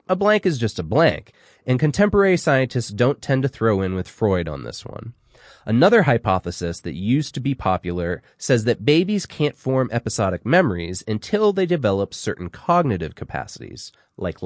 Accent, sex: American, male